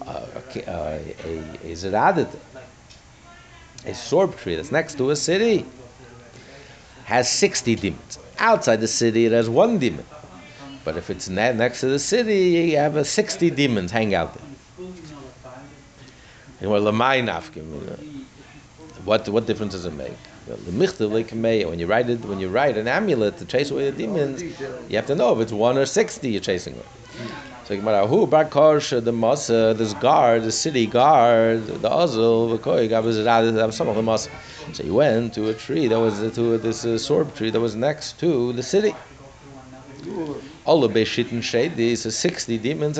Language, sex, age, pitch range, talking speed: English, male, 60-79, 115-145 Hz, 155 wpm